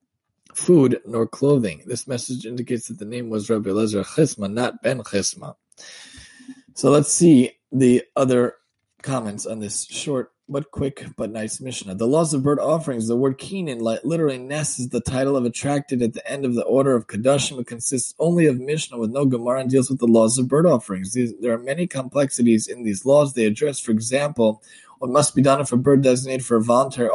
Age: 20-39